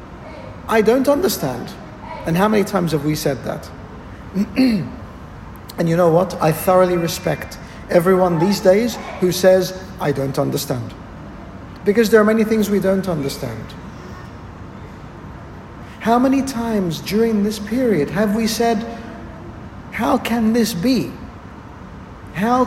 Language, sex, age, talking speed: English, male, 60-79, 125 wpm